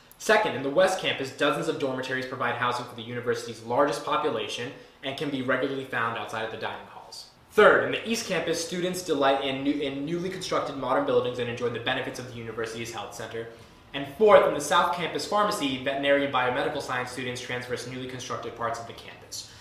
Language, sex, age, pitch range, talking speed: English, male, 20-39, 120-150 Hz, 205 wpm